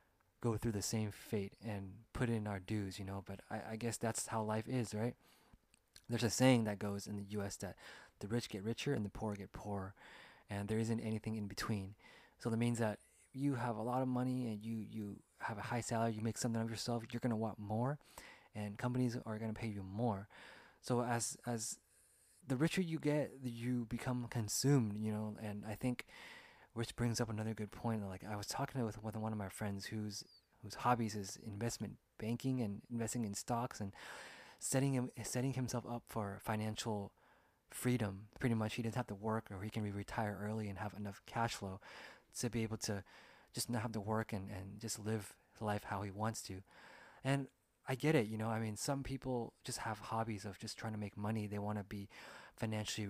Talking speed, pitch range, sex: 210 wpm, 105-120 Hz, male